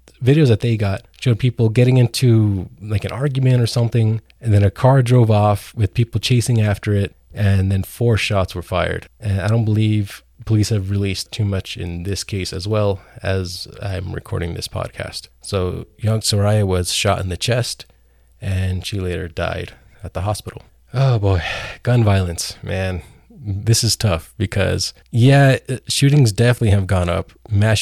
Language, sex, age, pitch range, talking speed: English, male, 20-39, 95-115 Hz, 175 wpm